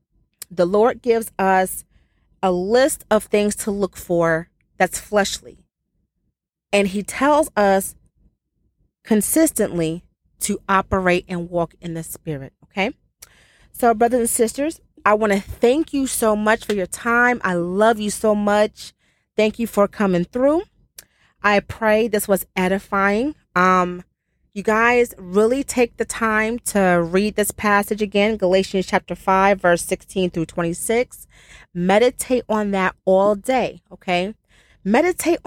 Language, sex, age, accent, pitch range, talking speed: English, female, 30-49, American, 185-245 Hz, 135 wpm